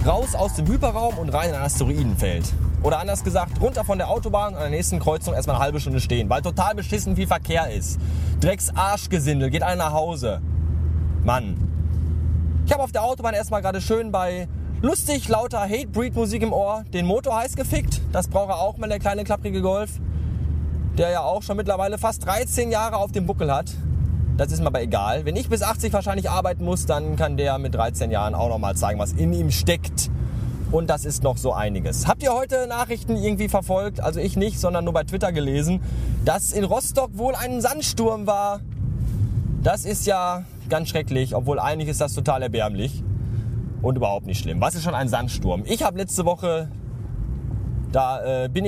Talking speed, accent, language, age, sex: 195 wpm, German, German, 20-39, male